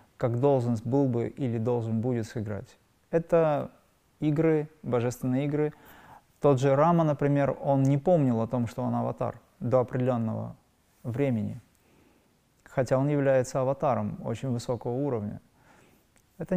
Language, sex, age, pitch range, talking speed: Russian, male, 20-39, 120-150 Hz, 125 wpm